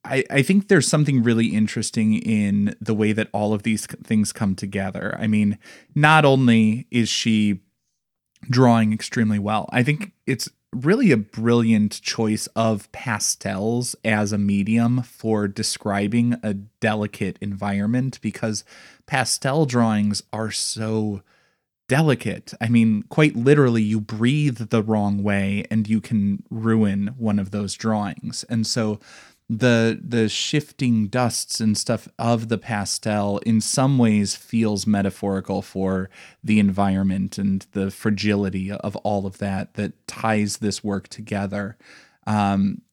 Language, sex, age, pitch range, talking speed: English, male, 20-39, 100-115 Hz, 135 wpm